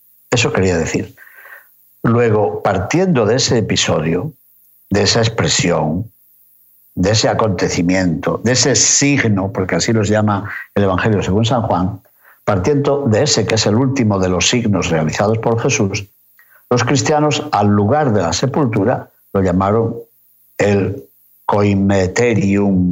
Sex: male